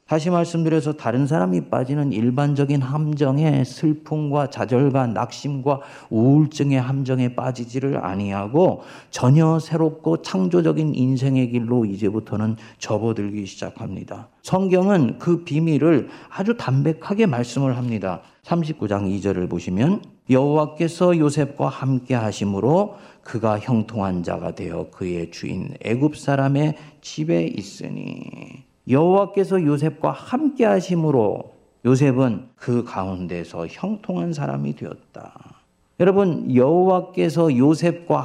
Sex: male